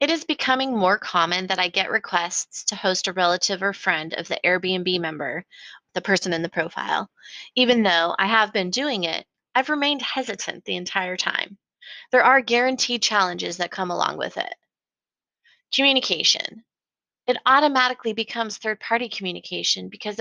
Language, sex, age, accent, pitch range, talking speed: English, female, 20-39, American, 180-250 Hz, 155 wpm